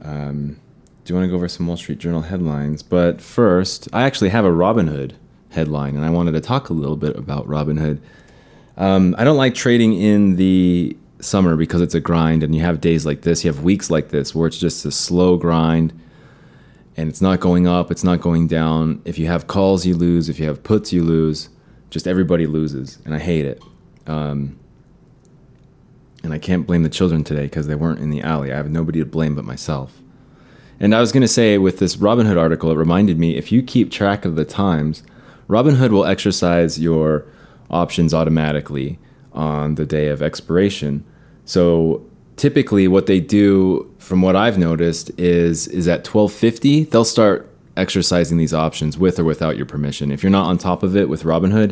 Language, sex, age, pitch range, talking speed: English, male, 30-49, 80-95 Hz, 200 wpm